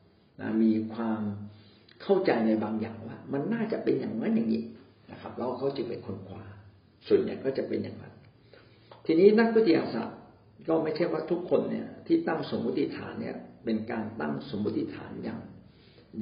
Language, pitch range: Thai, 110-130 Hz